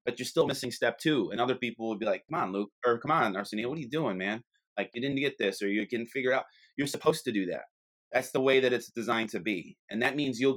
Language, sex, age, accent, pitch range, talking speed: English, male, 30-49, American, 110-140 Hz, 295 wpm